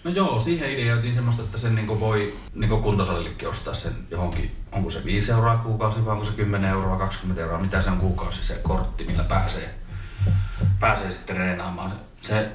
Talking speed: 180 wpm